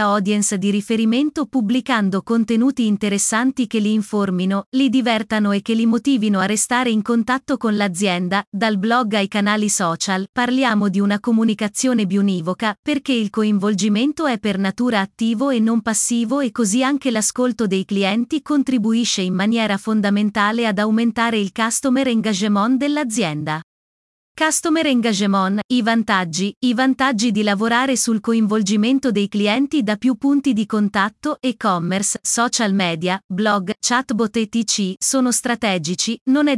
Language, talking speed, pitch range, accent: Italian, 140 wpm, 205-250 Hz, native